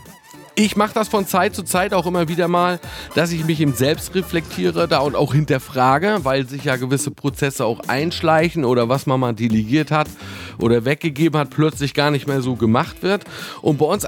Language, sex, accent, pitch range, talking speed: German, male, German, 130-165 Hz, 200 wpm